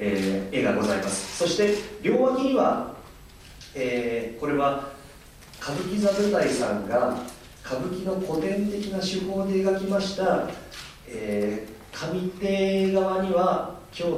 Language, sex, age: Japanese, male, 40-59